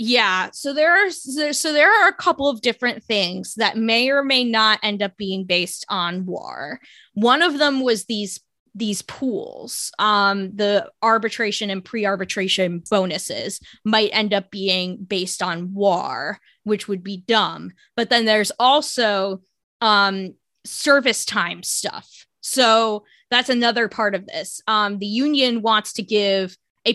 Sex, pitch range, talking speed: female, 195-235 Hz, 145 wpm